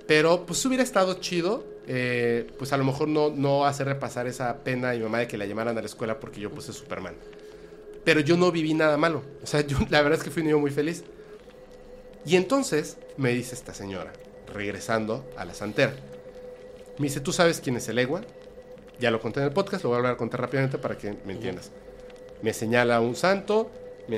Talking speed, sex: 215 wpm, male